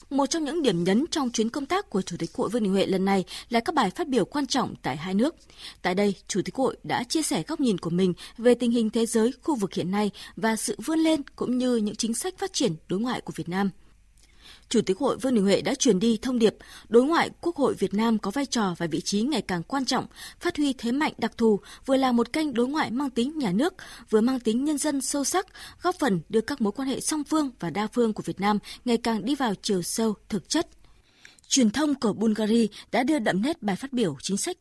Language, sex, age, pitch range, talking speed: Vietnamese, female, 20-39, 195-270 Hz, 260 wpm